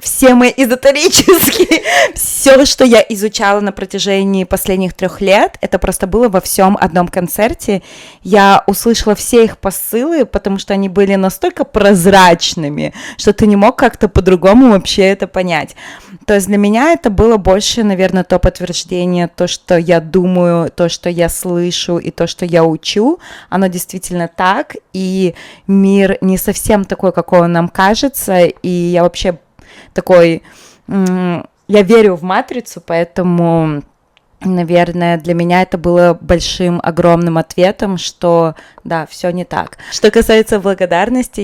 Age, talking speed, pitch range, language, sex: 20-39, 145 wpm, 170-205 Hz, Russian, female